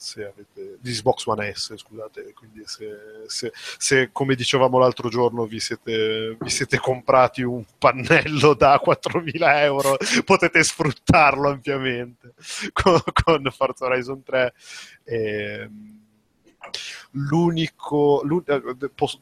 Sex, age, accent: male, 30-49, native